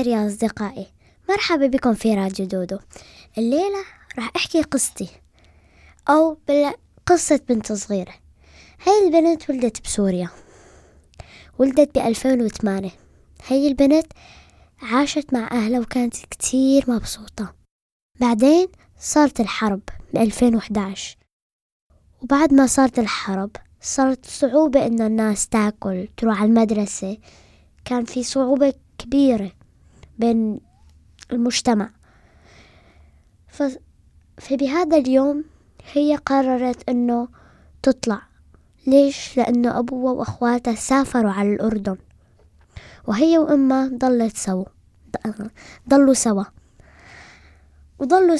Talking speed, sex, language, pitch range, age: 90 wpm, female, French, 205-275 Hz, 10-29